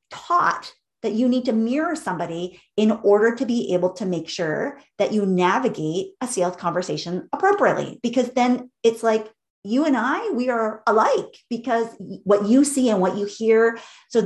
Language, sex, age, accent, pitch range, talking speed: English, female, 30-49, American, 185-240 Hz, 175 wpm